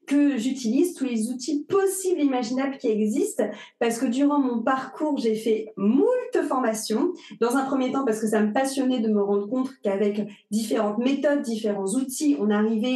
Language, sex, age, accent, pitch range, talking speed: French, female, 30-49, French, 220-290 Hz, 175 wpm